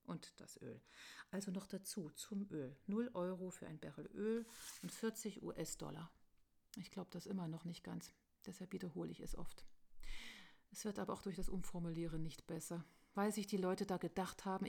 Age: 40-59